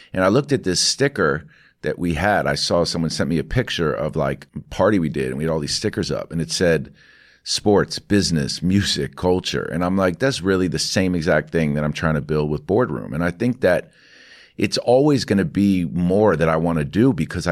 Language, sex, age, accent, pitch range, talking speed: English, male, 50-69, American, 80-95 Hz, 230 wpm